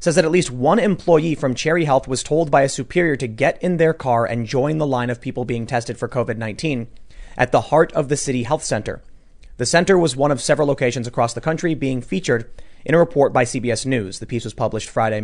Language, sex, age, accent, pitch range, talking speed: English, male, 30-49, American, 120-160 Hz, 235 wpm